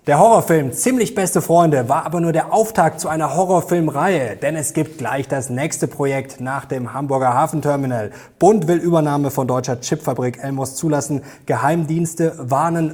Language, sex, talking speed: German, male, 160 wpm